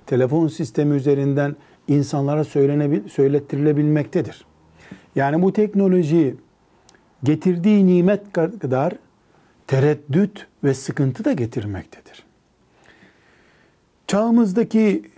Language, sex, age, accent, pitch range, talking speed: Turkish, male, 60-79, native, 120-155 Hz, 65 wpm